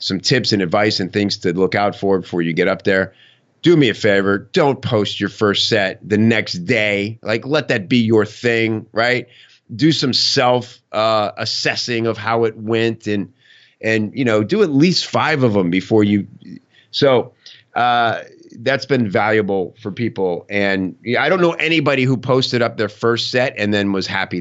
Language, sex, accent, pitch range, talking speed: English, male, American, 105-130 Hz, 190 wpm